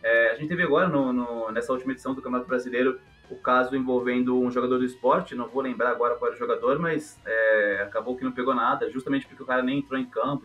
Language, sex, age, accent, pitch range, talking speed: Portuguese, male, 20-39, Brazilian, 125-150 Hz, 225 wpm